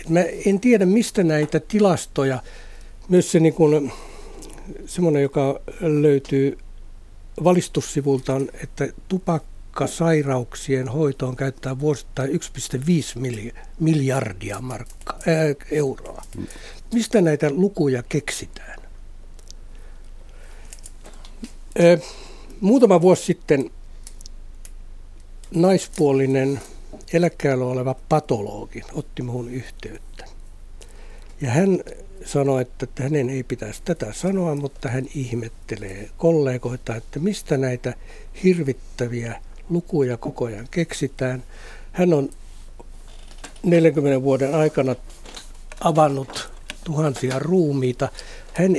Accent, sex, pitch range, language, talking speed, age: native, male, 110-160 Hz, Finnish, 80 wpm, 60-79